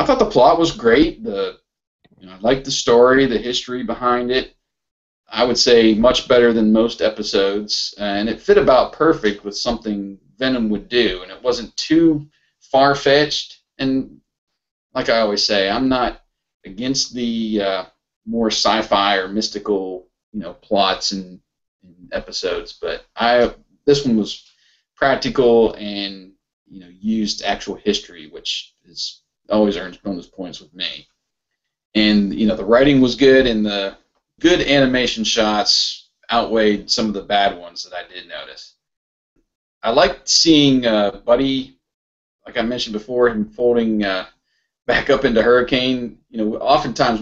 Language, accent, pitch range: English, American, 100-130 Hz